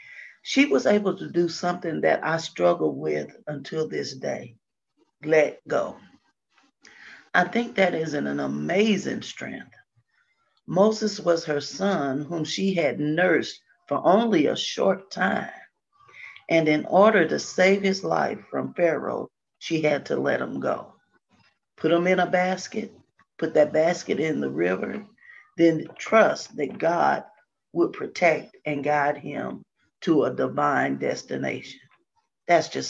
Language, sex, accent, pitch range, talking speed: English, female, American, 155-205 Hz, 140 wpm